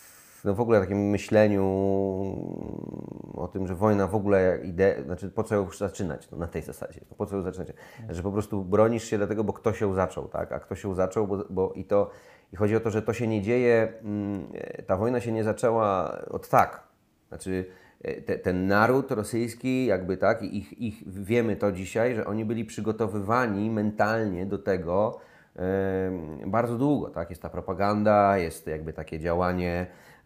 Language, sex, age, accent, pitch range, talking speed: Polish, male, 30-49, native, 95-110 Hz, 180 wpm